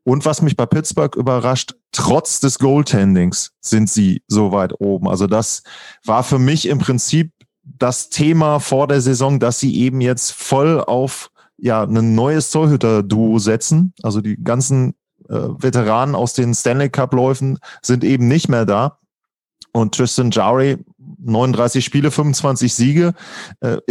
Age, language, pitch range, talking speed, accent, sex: 30-49, German, 115-140 Hz, 150 wpm, German, male